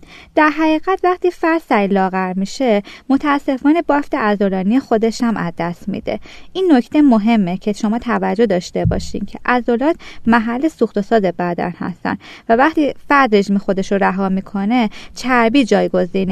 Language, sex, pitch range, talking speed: Persian, female, 200-275 Hz, 145 wpm